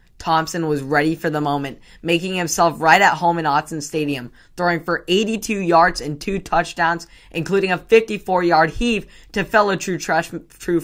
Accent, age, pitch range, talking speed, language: American, 10-29, 150-170 Hz, 155 wpm, English